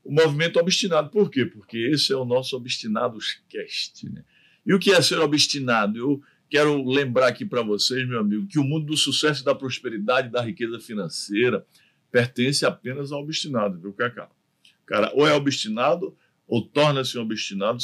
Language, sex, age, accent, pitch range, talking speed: Portuguese, male, 50-69, Brazilian, 115-145 Hz, 180 wpm